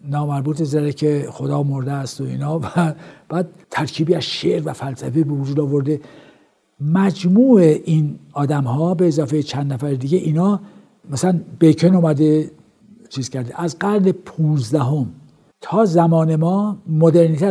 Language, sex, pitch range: Persian, male, 145-175 Hz